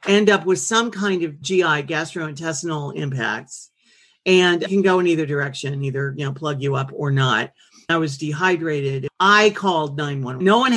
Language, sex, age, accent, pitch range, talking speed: English, male, 50-69, American, 150-190 Hz, 180 wpm